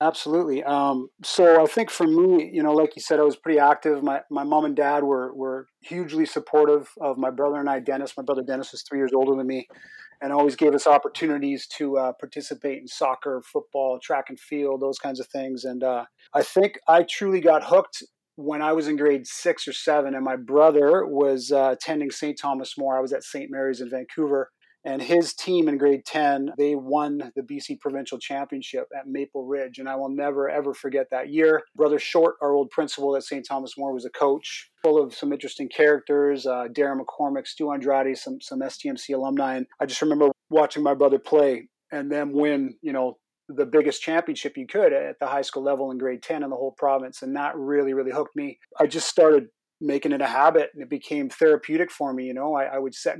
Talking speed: 220 wpm